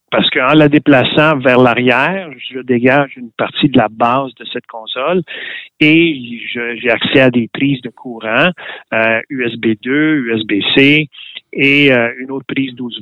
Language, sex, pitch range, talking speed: French, male, 120-140 Hz, 160 wpm